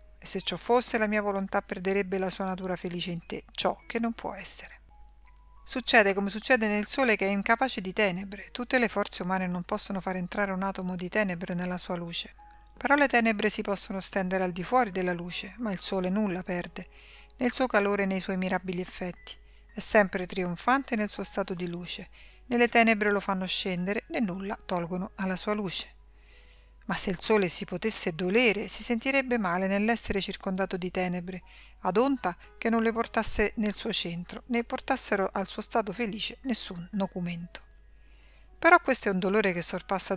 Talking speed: 185 wpm